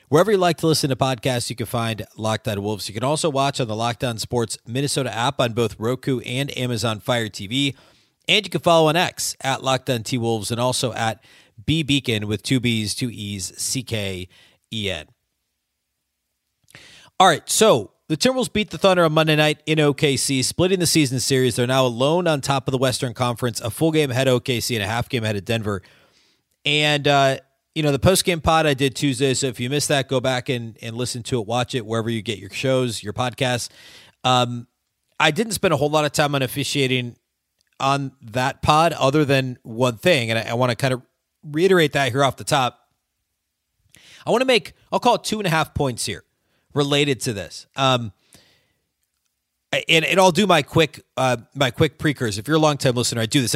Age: 40-59